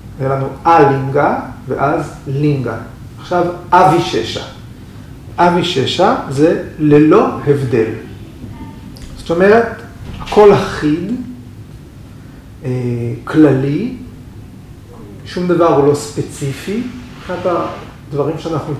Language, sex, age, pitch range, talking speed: Hebrew, male, 40-59, 130-170 Hz, 85 wpm